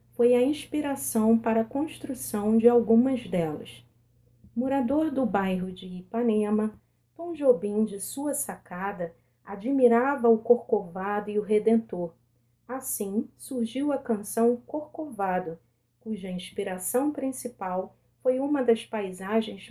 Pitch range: 195-255 Hz